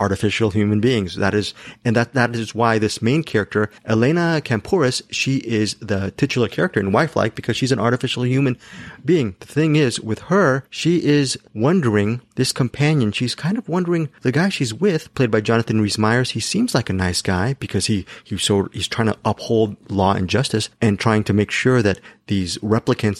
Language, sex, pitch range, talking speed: English, male, 105-130 Hz, 195 wpm